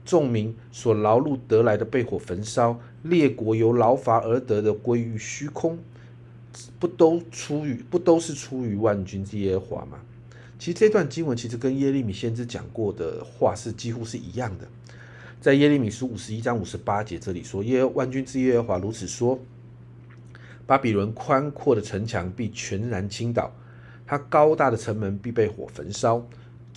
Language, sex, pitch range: Chinese, male, 110-125 Hz